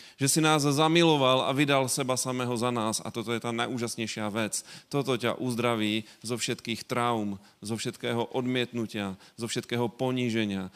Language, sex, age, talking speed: Slovak, male, 30-49, 155 wpm